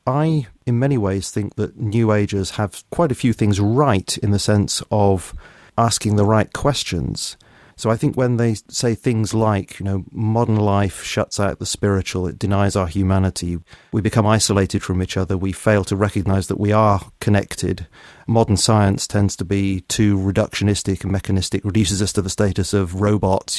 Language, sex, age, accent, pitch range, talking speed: English, male, 30-49, British, 95-115 Hz, 185 wpm